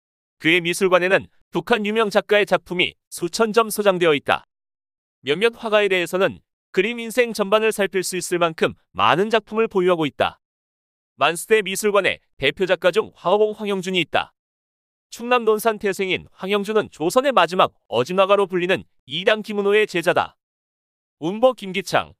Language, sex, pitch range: Korean, male, 180-220 Hz